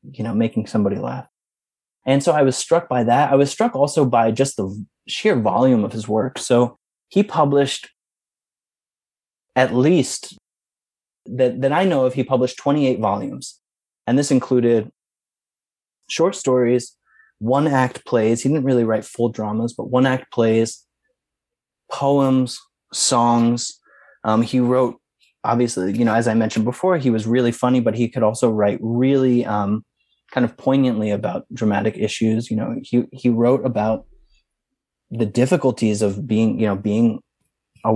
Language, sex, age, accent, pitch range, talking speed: English, male, 20-39, American, 110-130 Hz, 160 wpm